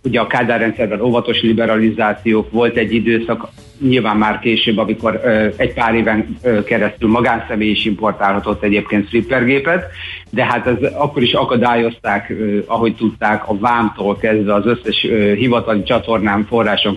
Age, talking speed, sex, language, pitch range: 50-69, 130 wpm, male, Hungarian, 105-120 Hz